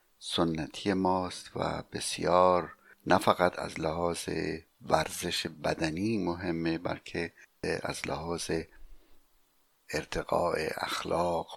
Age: 60-79